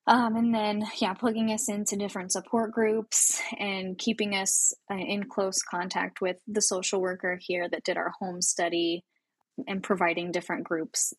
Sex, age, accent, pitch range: female, 10-29, American, 175-220 Hz